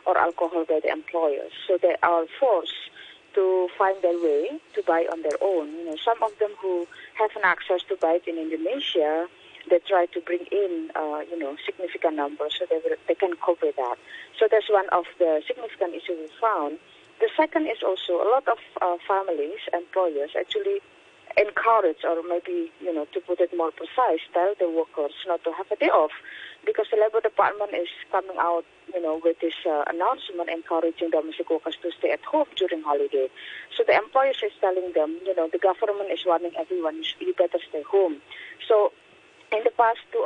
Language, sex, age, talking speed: English, female, 30-49, 195 wpm